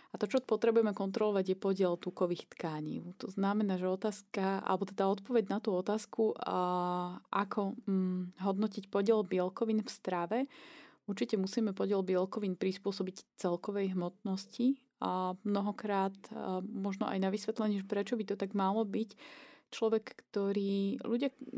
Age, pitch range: 30-49, 190-220 Hz